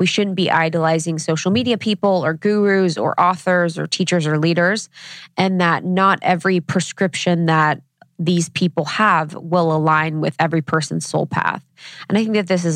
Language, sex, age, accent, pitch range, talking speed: English, female, 20-39, American, 160-185 Hz, 175 wpm